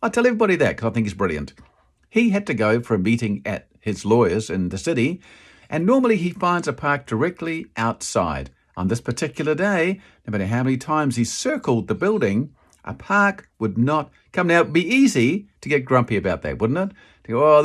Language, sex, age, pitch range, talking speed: English, male, 50-69, 105-155 Hz, 210 wpm